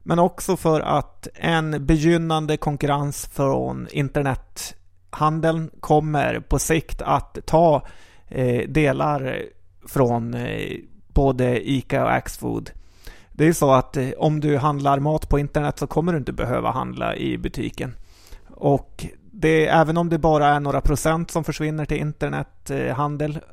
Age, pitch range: 30-49, 125-155 Hz